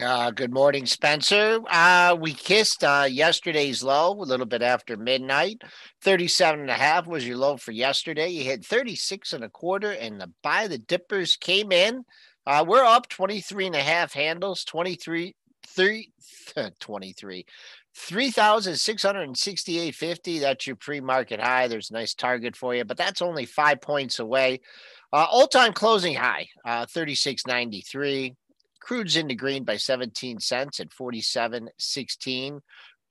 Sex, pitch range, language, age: male, 125-195 Hz, English, 50-69